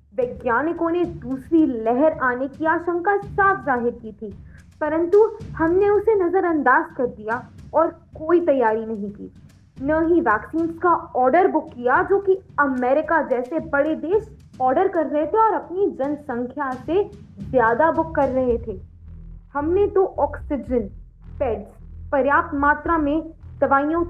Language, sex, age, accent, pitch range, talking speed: Hindi, female, 20-39, native, 260-360 Hz, 140 wpm